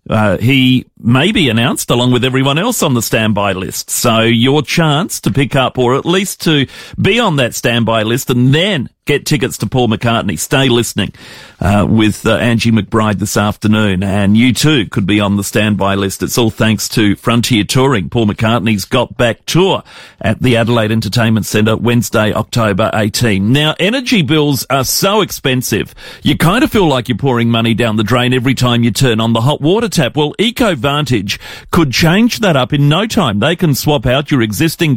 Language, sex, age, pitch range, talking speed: English, male, 40-59, 110-150 Hz, 195 wpm